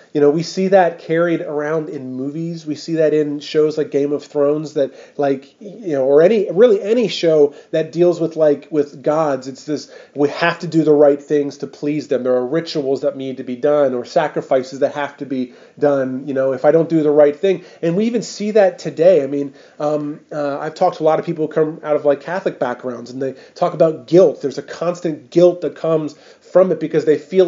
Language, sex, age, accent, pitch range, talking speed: English, male, 30-49, American, 130-155 Hz, 240 wpm